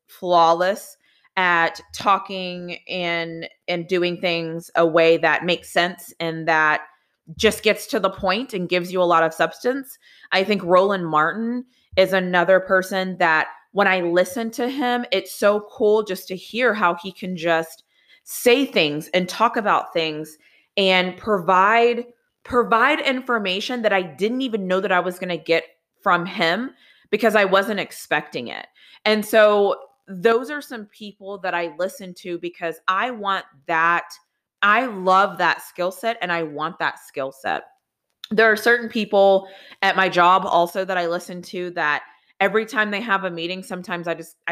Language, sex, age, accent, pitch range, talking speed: English, female, 20-39, American, 170-210 Hz, 165 wpm